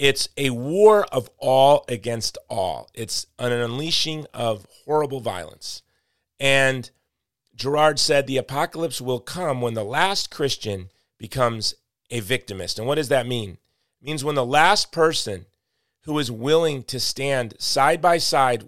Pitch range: 115-140 Hz